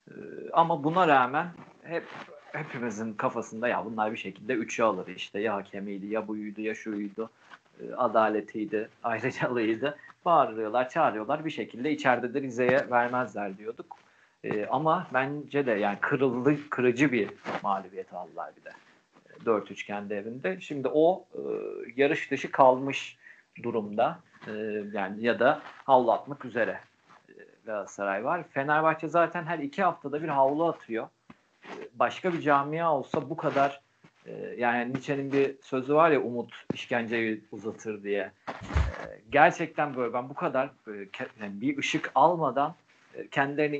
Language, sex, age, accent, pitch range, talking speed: Turkish, male, 40-59, native, 110-155 Hz, 125 wpm